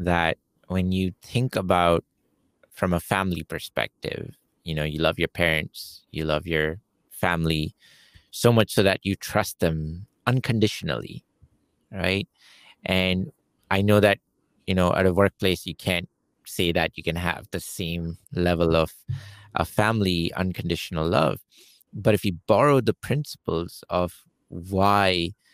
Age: 30-49